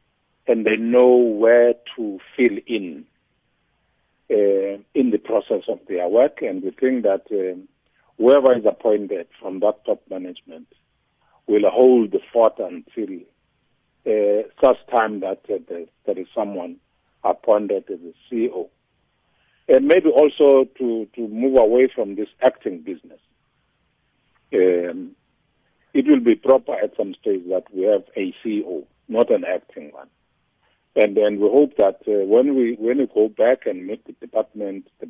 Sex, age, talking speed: male, 50-69, 150 wpm